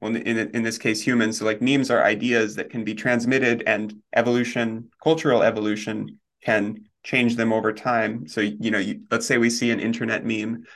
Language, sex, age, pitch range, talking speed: English, male, 20-39, 110-125 Hz, 190 wpm